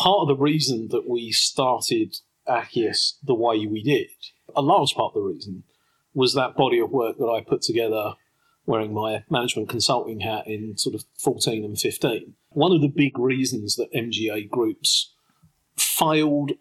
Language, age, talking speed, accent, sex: English, 40-59, 170 wpm, British, male